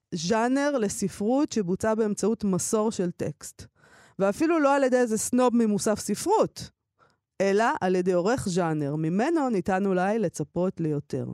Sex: female